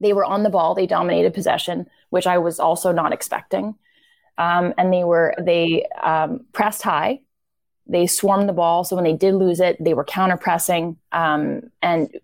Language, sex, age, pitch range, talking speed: English, female, 20-39, 175-210 Hz, 175 wpm